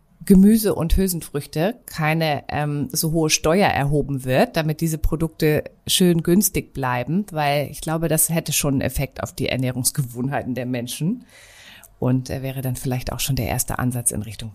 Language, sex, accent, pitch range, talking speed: German, female, German, 145-195 Hz, 165 wpm